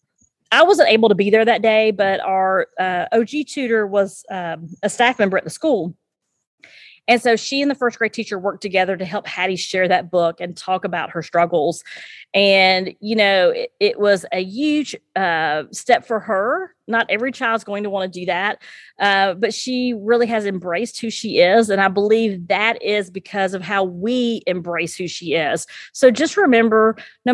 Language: English